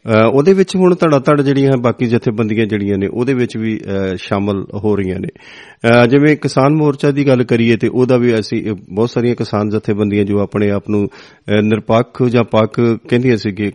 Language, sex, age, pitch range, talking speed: Punjabi, male, 40-59, 105-135 Hz, 175 wpm